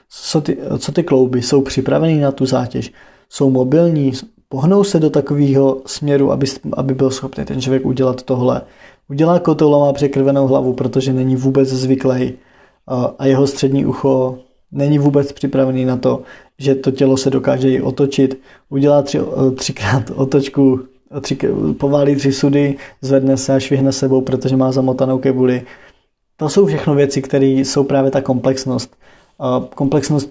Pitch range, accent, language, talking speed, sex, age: 135-145 Hz, native, Czech, 150 wpm, male, 20-39